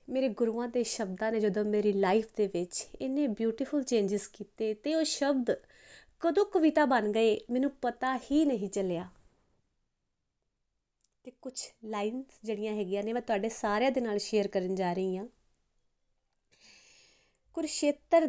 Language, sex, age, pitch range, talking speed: Punjabi, female, 20-39, 195-260 Hz, 140 wpm